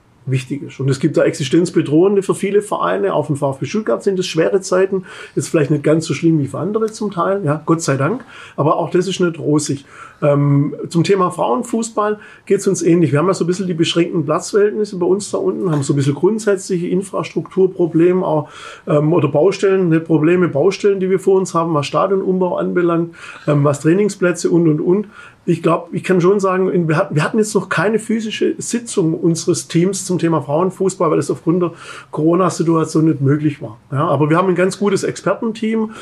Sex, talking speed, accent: male, 195 wpm, German